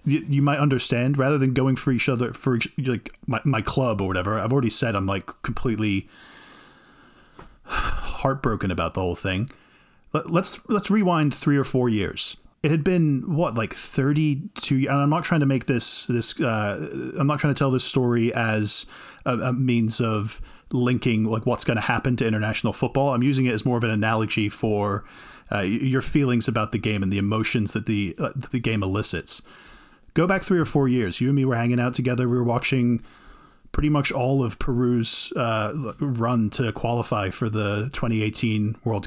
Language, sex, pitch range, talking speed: English, male, 110-140 Hz, 195 wpm